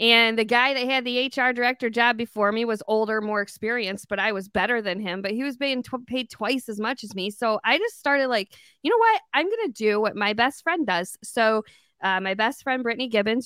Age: 20-39